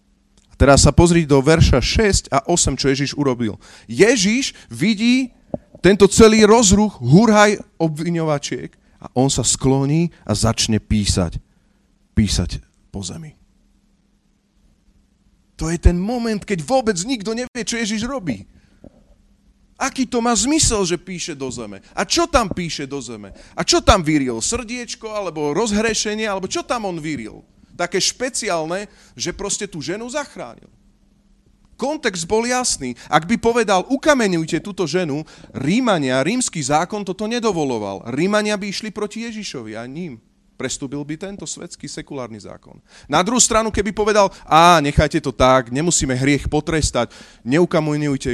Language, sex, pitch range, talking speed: Slovak, male, 140-220 Hz, 140 wpm